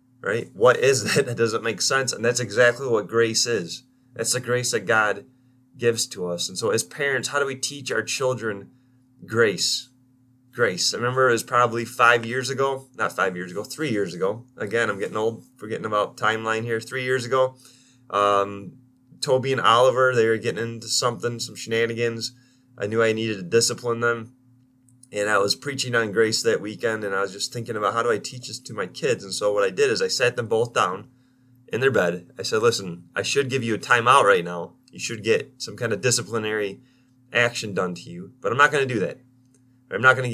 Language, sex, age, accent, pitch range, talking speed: English, male, 20-39, American, 115-130 Hz, 220 wpm